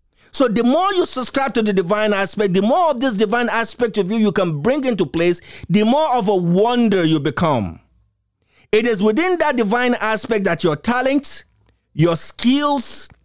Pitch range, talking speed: 195-290 Hz, 180 wpm